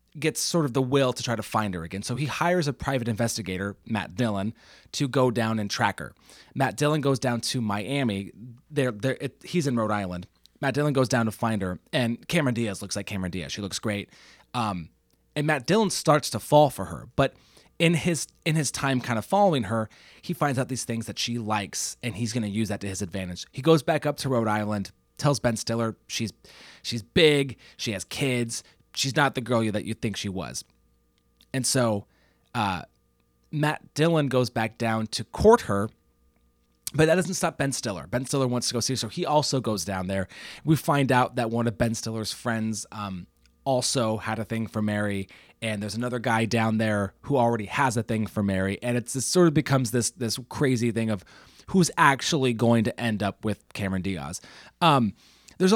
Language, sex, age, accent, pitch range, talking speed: English, male, 30-49, American, 105-135 Hz, 210 wpm